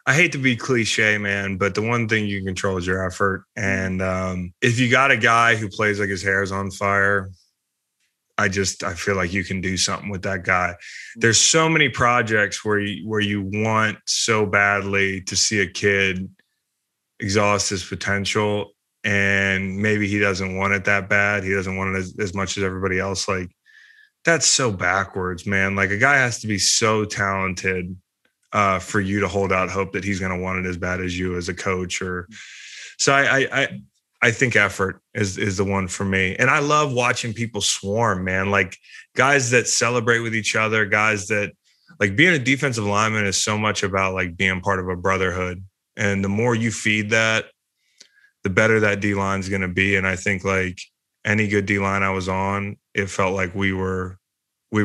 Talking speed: 205 wpm